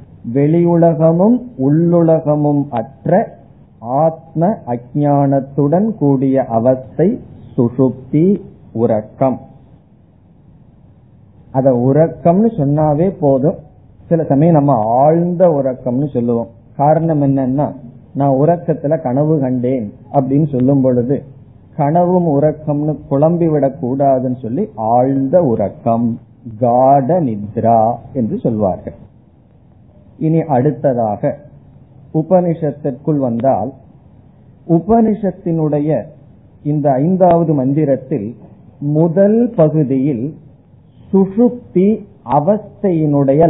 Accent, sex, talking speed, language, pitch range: native, male, 70 wpm, Tamil, 125-160 Hz